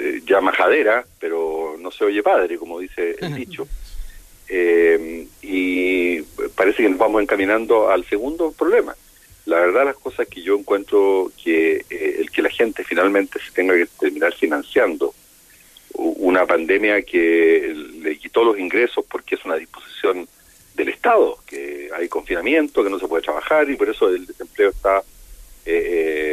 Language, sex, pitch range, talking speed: Spanish, male, 360-425 Hz, 155 wpm